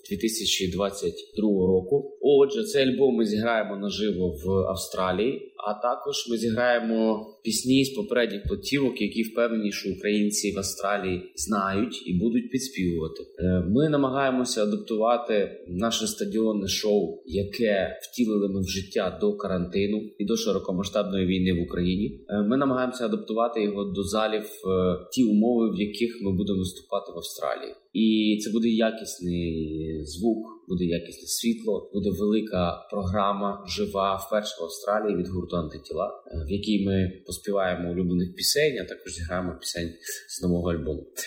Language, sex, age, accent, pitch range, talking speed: Ukrainian, male, 30-49, native, 95-115 Hz, 135 wpm